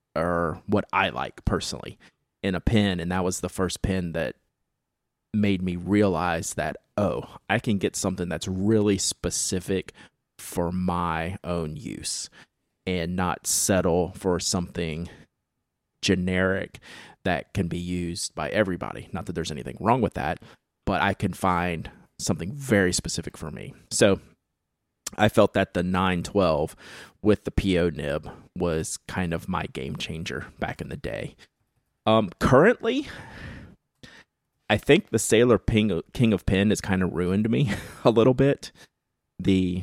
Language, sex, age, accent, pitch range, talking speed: English, male, 30-49, American, 90-105 Hz, 150 wpm